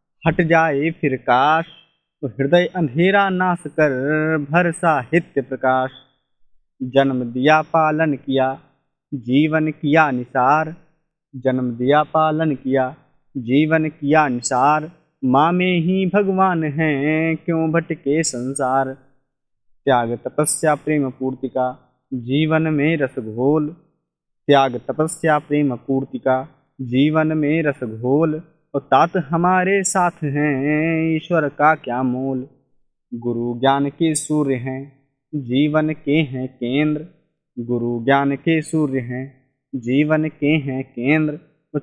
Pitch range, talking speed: 130-160 Hz, 110 wpm